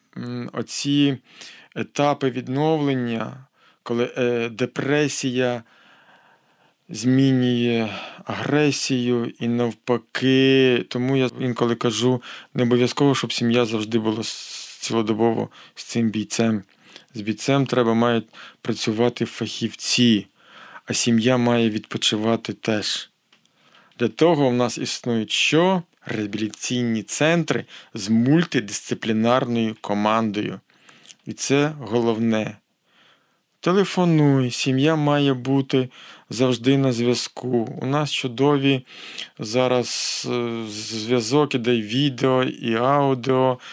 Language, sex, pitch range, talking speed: Ukrainian, male, 115-135 Hz, 90 wpm